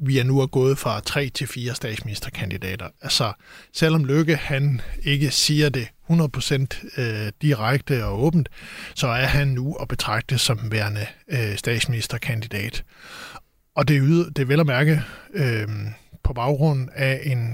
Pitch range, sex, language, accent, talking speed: 120-150 Hz, male, Danish, native, 145 wpm